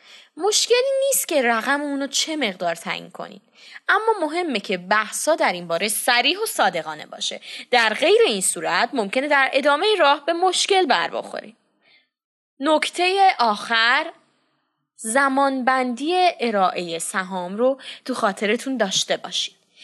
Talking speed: 125 wpm